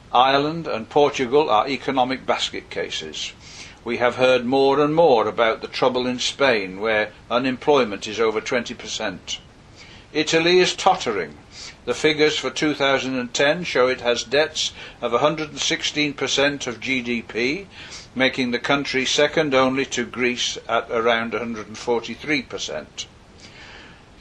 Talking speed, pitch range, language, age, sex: 120 wpm, 115-155 Hz, English, 60-79, male